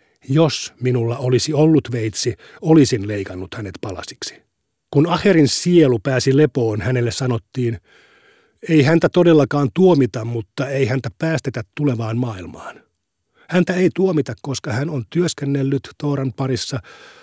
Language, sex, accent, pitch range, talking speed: Finnish, male, native, 115-145 Hz, 120 wpm